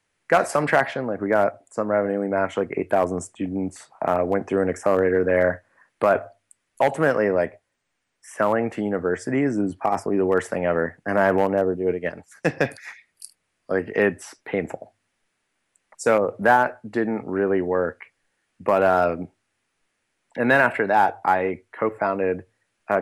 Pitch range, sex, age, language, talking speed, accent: 90-110 Hz, male, 20-39, English, 145 wpm, American